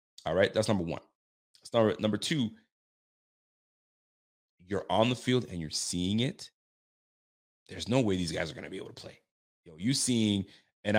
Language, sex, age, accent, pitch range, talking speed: English, male, 30-49, American, 90-110 Hz, 180 wpm